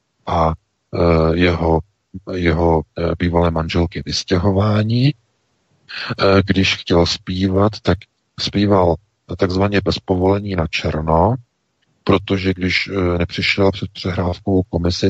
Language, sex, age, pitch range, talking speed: Czech, male, 50-69, 85-105 Hz, 85 wpm